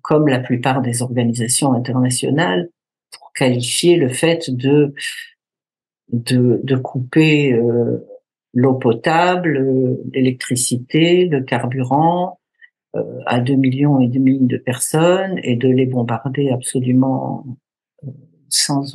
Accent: French